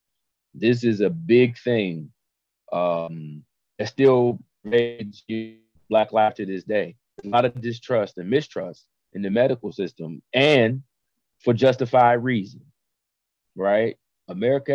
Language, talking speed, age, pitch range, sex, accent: English, 120 wpm, 30-49, 110-130 Hz, male, American